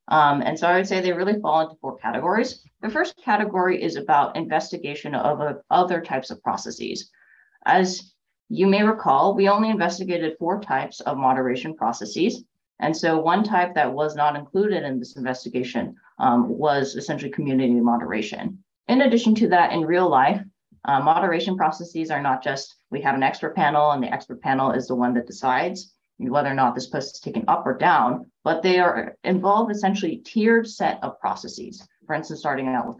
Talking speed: 185 wpm